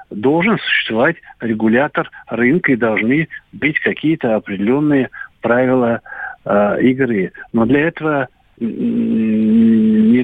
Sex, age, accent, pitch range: male, 60-79, native, 110-150 Hz